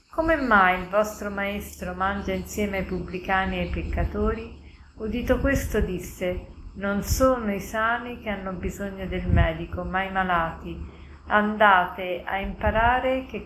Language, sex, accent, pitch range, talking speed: Italian, female, native, 185-220 Hz, 140 wpm